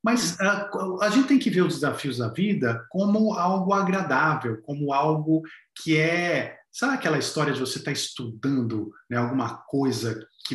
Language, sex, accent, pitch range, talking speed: Portuguese, male, Brazilian, 145-210 Hz, 165 wpm